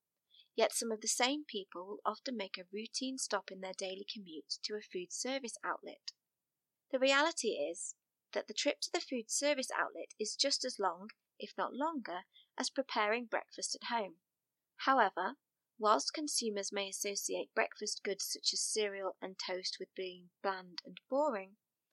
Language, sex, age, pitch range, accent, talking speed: English, female, 30-49, 195-270 Hz, British, 165 wpm